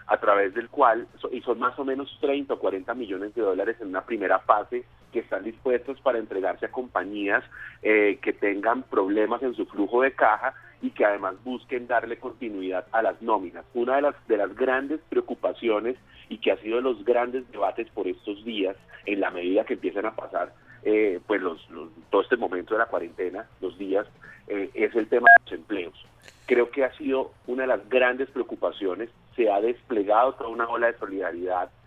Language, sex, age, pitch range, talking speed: Spanish, male, 40-59, 110-130 Hz, 200 wpm